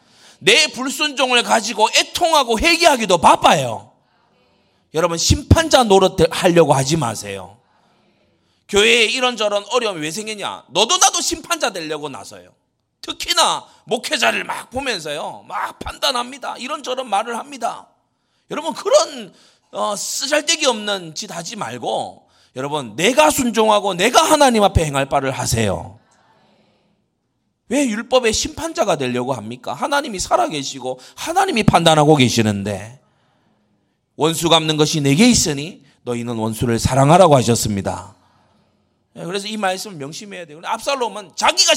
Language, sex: Korean, male